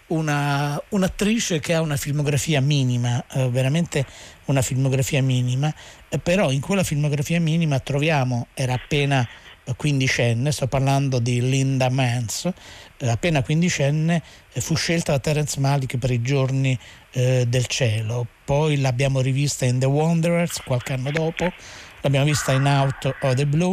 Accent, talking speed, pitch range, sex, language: native, 145 wpm, 130-155 Hz, male, Italian